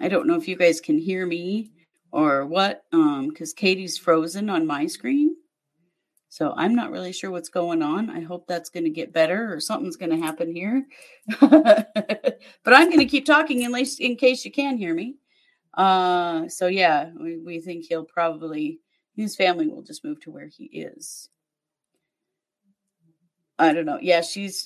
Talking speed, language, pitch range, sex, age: 180 wpm, English, 175-245 Hz, female, 30-49